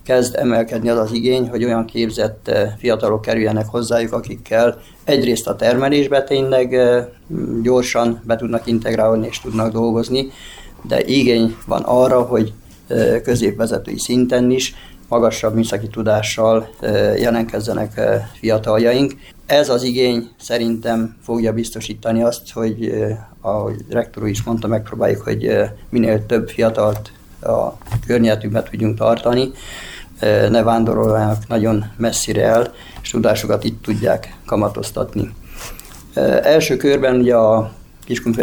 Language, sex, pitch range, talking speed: Hungarian, male, 110-120 Hz, 125 wpm